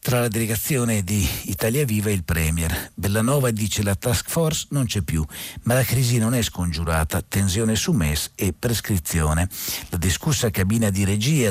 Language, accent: Italian, native